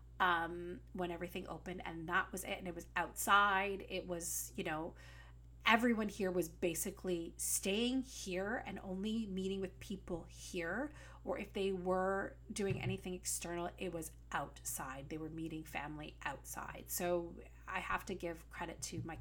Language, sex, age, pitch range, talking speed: English, female, 30-49, 145-200 Hz, 160 wpm